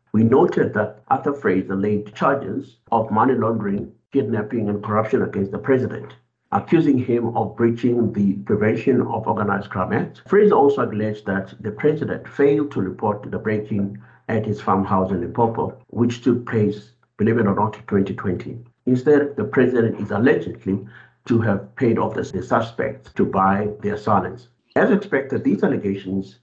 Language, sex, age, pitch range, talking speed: English, male, 60-79, 100-125 Hz, 160 wpm